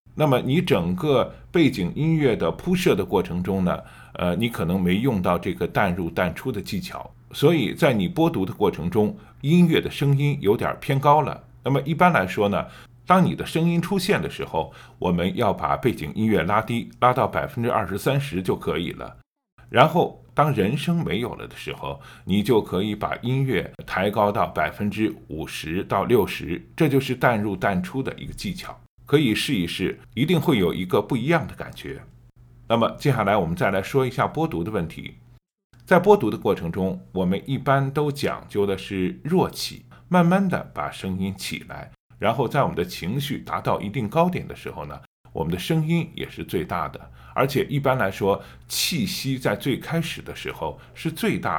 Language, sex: Chinese, male